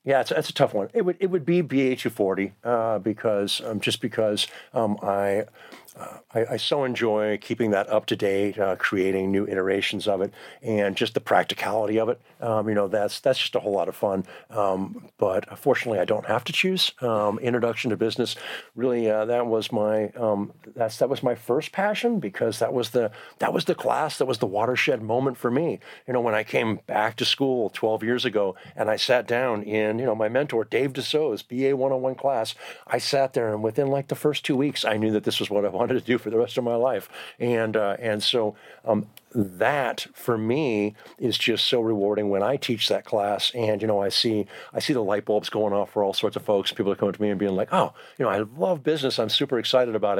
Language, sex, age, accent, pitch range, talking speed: English, male, 50-69, American, 105-125 Hz, 235 wpm